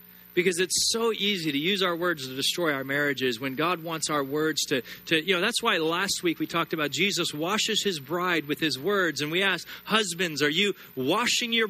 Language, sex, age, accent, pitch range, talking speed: English, male, 40-59, American, 150-205 Hz, 220 wpm